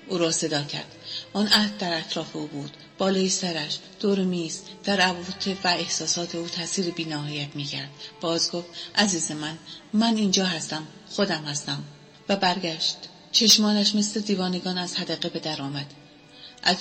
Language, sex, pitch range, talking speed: Persian, female, 160-200 Hz, 150 wpm